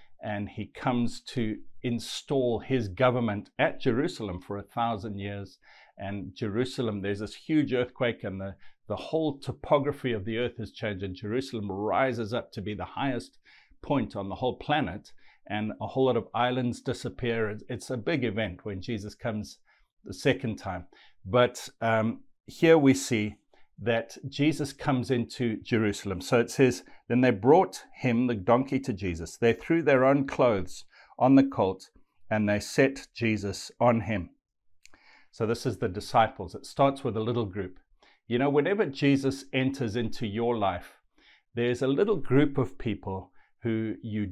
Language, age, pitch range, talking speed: English, 60-79, 105-130 Hz, 165 wpm